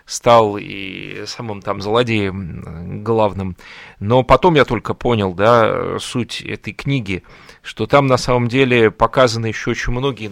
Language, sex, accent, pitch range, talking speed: Russian, male, native, 105-135 Hz, 140 wpm